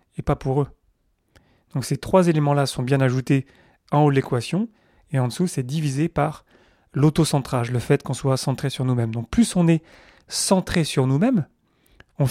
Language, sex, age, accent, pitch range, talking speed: French, male, 30-49, French, 130-165 Hz, 180 wpm